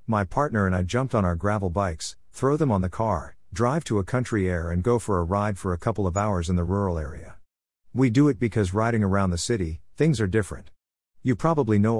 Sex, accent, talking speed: male, American, 235 wpm